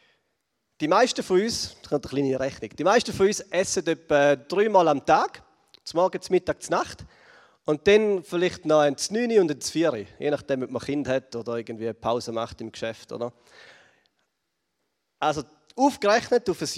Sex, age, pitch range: male, 30-49, 135-195 Hz